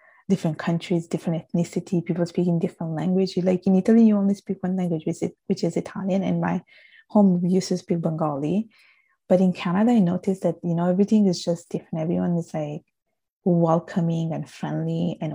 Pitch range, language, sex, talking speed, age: 170-195 Hz, English, female, 180 wpm, 20-39